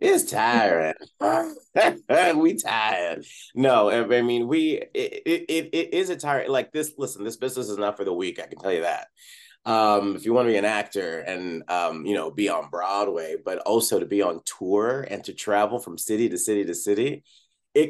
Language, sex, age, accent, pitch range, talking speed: English, male, 30-49, American, 100-130 Hz, 205 wpm